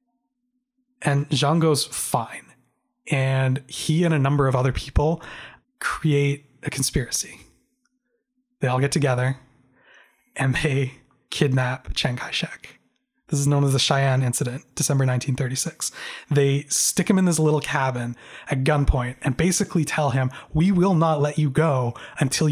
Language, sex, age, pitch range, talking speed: English, male, 20-39, 130-160 Hz, 140 wpm